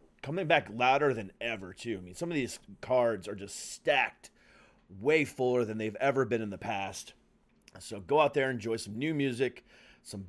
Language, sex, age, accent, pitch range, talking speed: English, male, 30-49, American, 115-155 Hz, 190 wpm